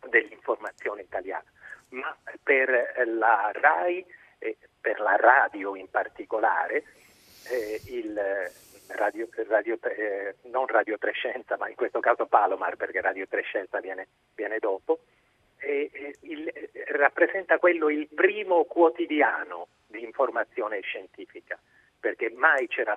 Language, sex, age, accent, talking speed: Italian, male, 40-59, native, 125 wpm